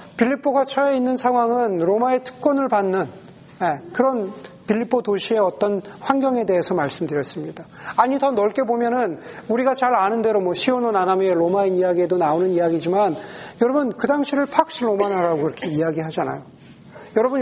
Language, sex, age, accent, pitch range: Korean, male, 40-59, native, 180-245 Hz